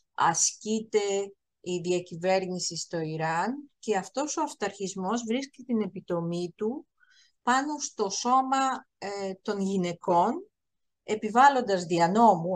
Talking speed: 95 wpm